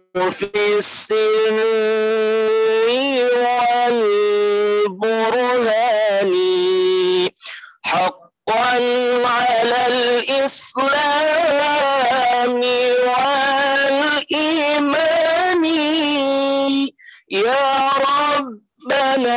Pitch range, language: 205-285 Hz, Indonesian